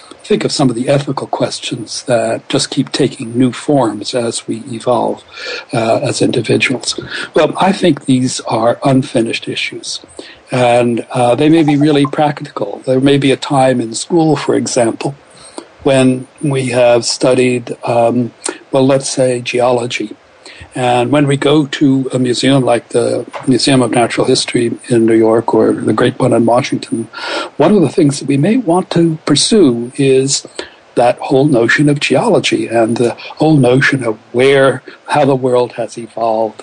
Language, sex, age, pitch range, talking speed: English, male, 60-79, 120-145 Hz, 165 wpm